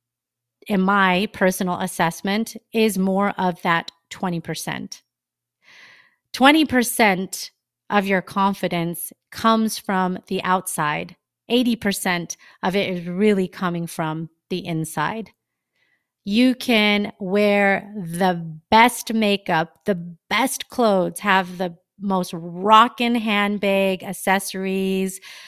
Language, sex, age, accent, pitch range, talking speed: English, female, 30-49, American, 170-200 Hz, 95 wpm